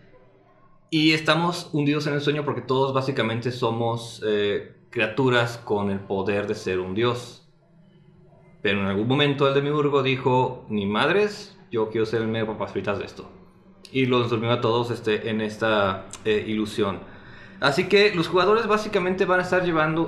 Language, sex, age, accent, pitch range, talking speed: Spanish, male, 20-39, Mexican, 110-145 Hz, 175 wpm